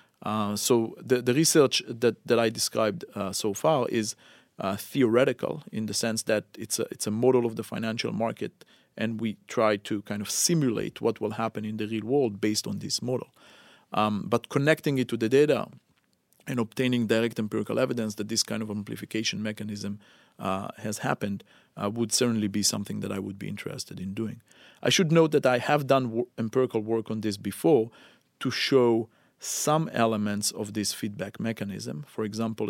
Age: 40-59